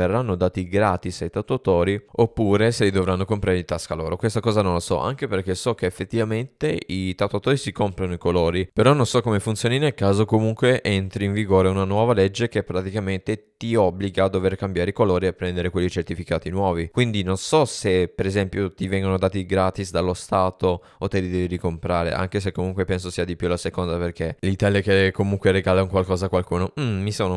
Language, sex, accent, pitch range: Italian, male, native, 90-100 Hz